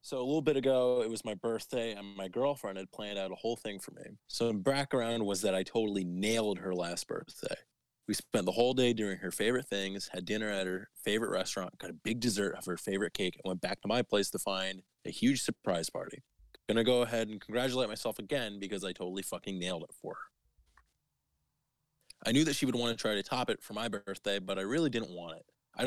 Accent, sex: American, male